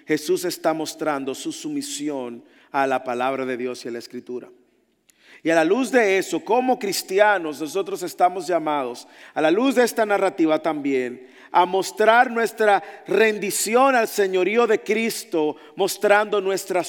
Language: English